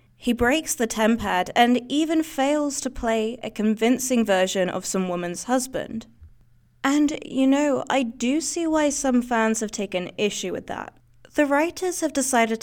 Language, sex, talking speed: English, female, 160 wpm